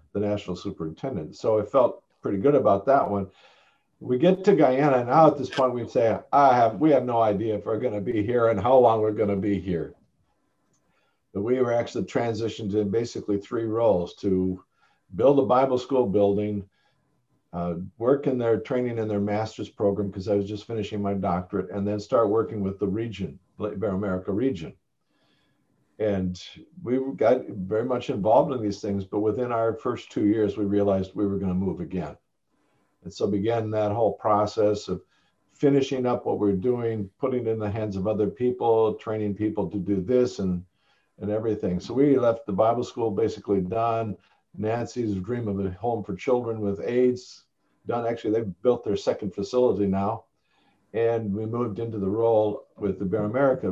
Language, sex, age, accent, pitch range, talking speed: English, male, 50-69, American, 100-120 Hz, 185 wpm